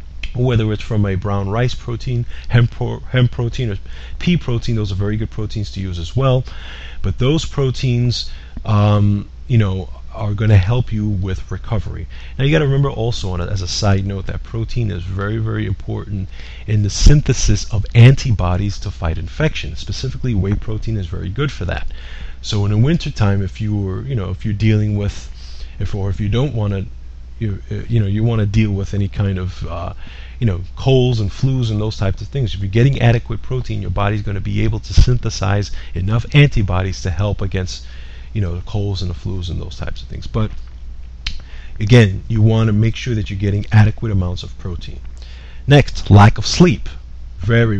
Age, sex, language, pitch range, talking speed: 30-49, male, English, 90-115 Hz, 200 wpm